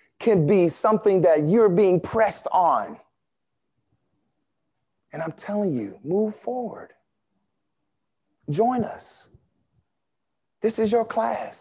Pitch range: 150-210 Hz